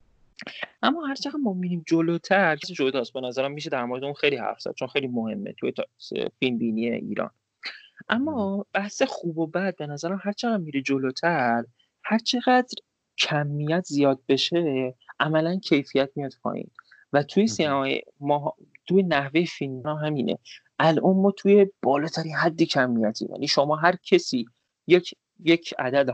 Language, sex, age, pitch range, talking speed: Persian, male, 30-49, 135-185 Hz, 145 wpm